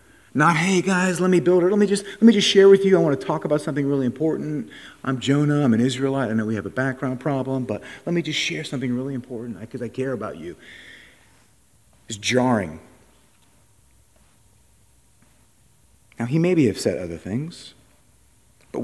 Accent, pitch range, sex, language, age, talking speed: American, 120-160 Hz, male, English, 40-59, 190 wpm